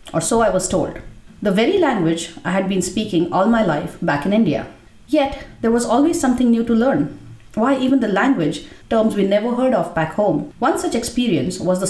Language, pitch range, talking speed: English, 175-275 Hz, 210 wpm